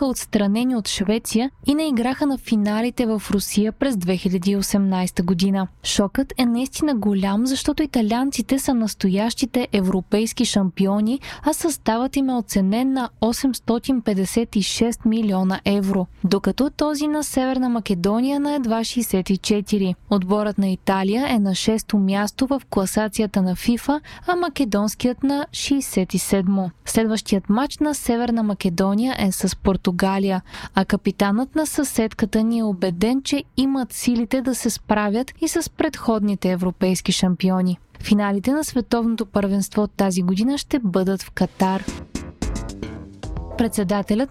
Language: Bulgarian